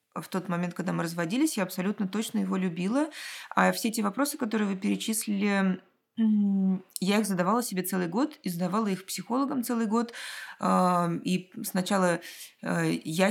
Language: Russian